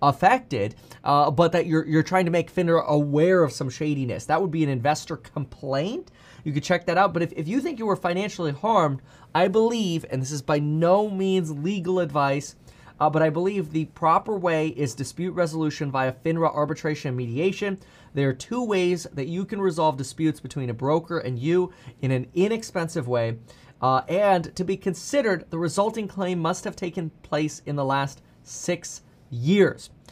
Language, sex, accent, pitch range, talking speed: English, male, American, 140-185 Hz, 185 wpm